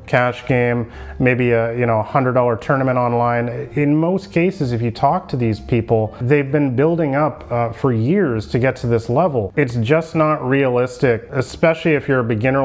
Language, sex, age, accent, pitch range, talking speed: English, male, 30-49, American, 120-150 Hz, 195 wpm